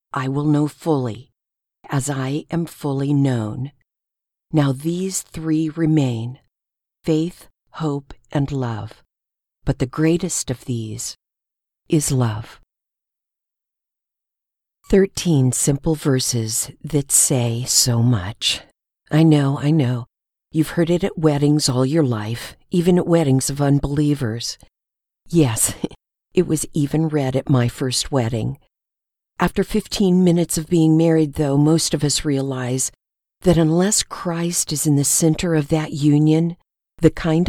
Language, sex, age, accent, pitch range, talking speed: English, female, 50-69, American, 135-165 Hz, 130 wpm